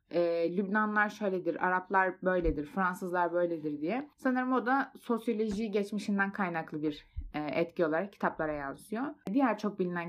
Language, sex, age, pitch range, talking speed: Turkish, female, 20-39, 175-240 Hz, 125 wpm